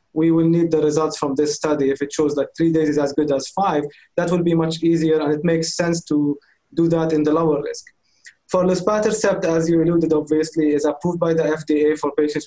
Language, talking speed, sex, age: English, 230 wpm, male, 20-39